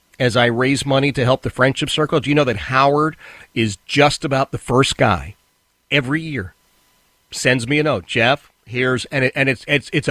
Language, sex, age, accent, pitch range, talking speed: English, male, 40-59, American, 110-150 Hz, 200 wpm